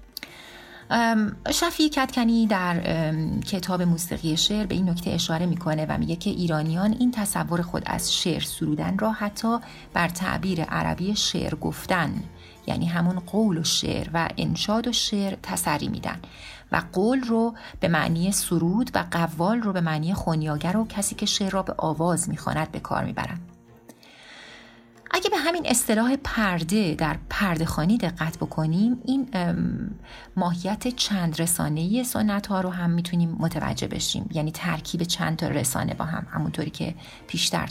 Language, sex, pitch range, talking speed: Persian, female, 165-210 Hz, 150 wpm